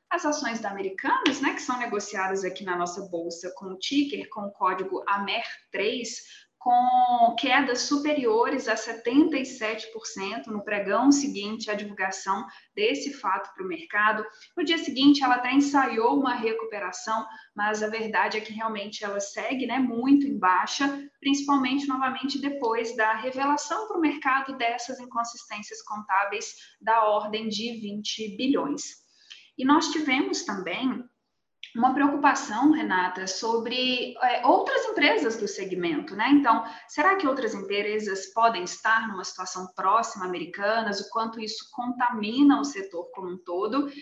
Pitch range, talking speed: 210-280 Hz, 140 wpm